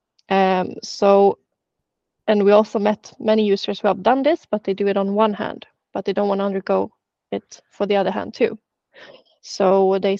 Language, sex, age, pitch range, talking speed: Danish, female, 20-39, 200-225 Hz, 195 wpm